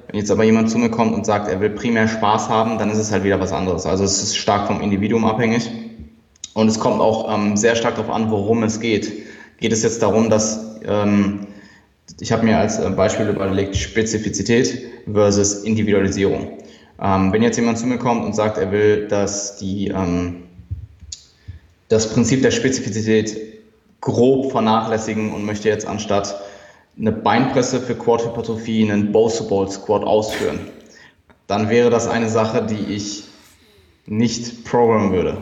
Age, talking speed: 20-39, 165 wpm